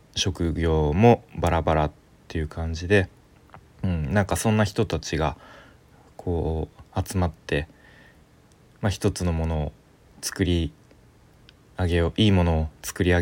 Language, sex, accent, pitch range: Japanese, male, native, 80-100 Hz